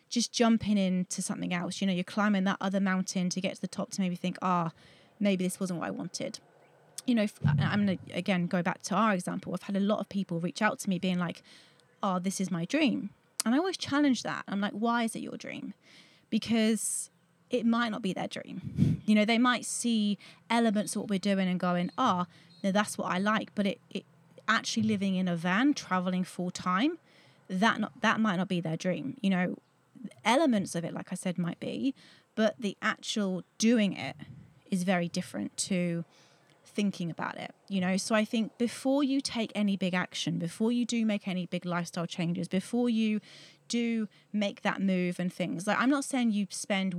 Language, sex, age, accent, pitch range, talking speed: English, female, 30-49, British, 180-220 Hz, 215 wpm